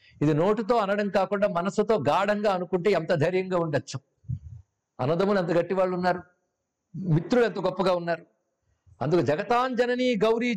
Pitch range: 160-220 Hz